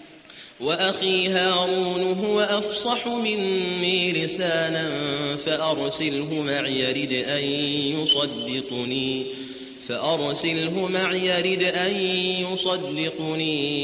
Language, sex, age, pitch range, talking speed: Arabic, male, 30-49, 130-180 Hz, 65 wpm